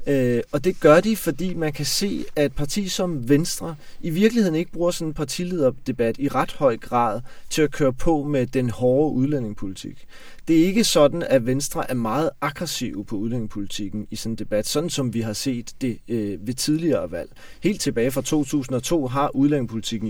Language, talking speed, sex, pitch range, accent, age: Danish, 190 wpm, male, 115-155 Hz, native, 30-49